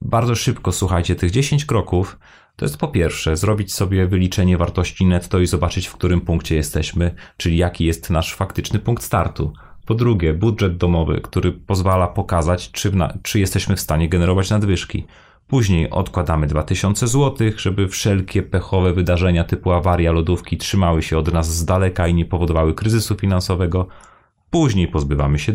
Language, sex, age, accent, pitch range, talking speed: Polish, male, 30-49, native, 80-95 Hz, 155 wpm